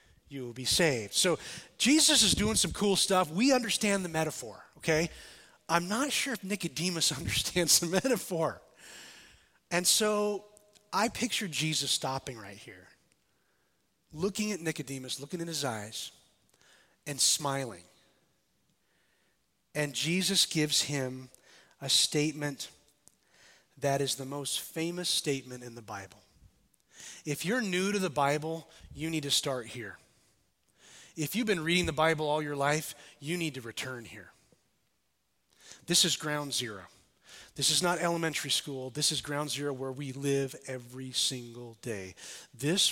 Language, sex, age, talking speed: English, male, 30-49, 140 wpm